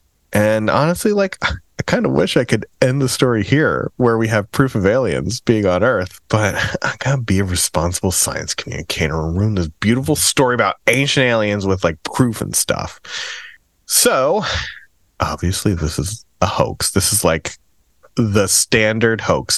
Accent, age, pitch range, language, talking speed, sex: American, 30-49, 90-135 Hz, English, 170 wpm, male